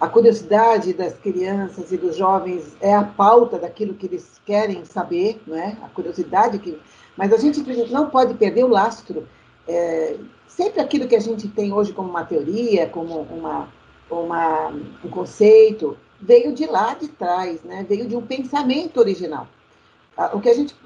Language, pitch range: Portuguese, 180-255 Hz